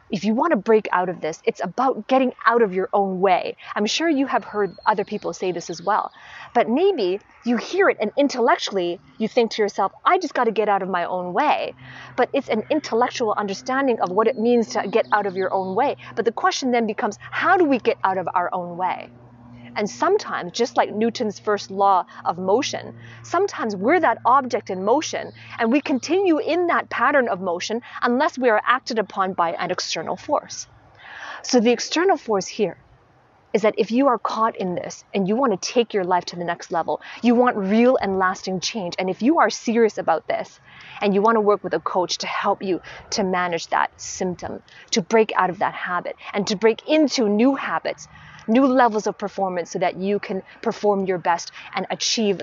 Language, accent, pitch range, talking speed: English, American, 185-240 Hz, 215 wpm